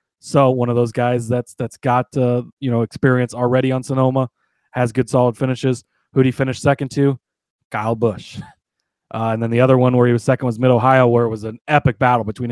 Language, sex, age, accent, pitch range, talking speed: English, male, 30-49, American, 120-135 Hz, 215 wpm